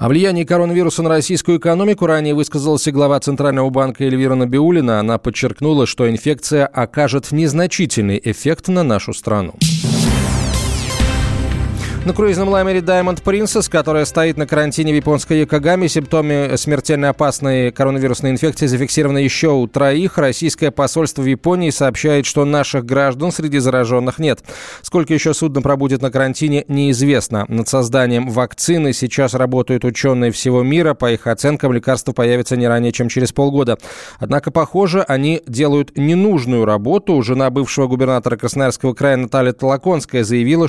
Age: 20-39